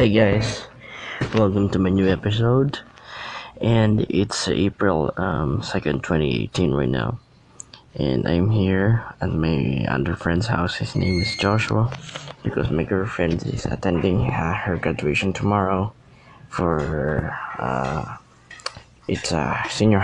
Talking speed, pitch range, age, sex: 120 wpm, 85-105 Hz, 20-39, male